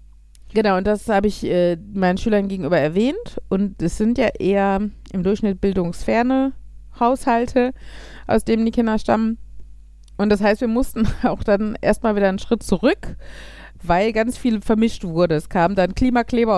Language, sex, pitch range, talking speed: German, female, 190-240 Hz, 165 wpm